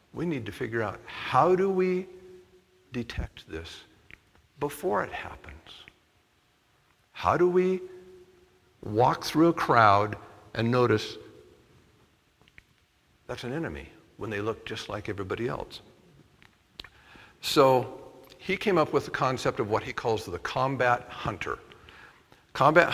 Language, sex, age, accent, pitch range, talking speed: English, male, 60-79, American, 105-160 Hz, 125 wpm